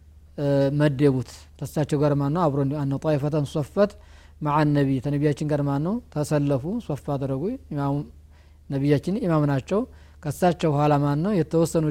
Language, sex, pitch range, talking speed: Amharic, male, 135-165 Hz, 115 wpm